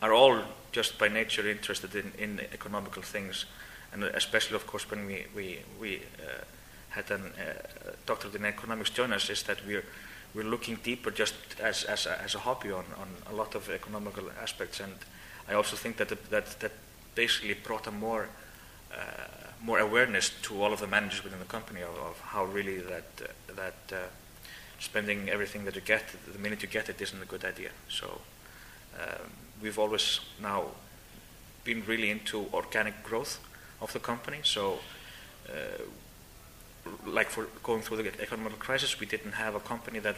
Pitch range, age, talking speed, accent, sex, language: 105-125 Hz, 30-49, 180 wpm, Finnish, male, Italian